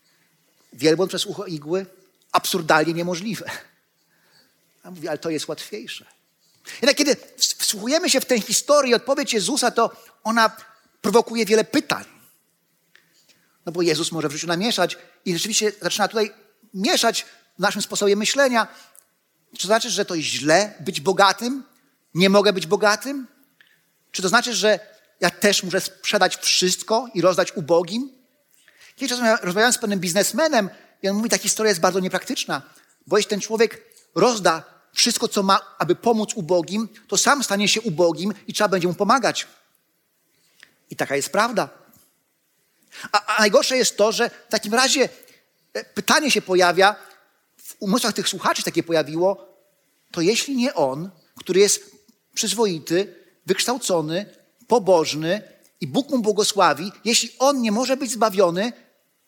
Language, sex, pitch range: Polish, male, 185-230 Hz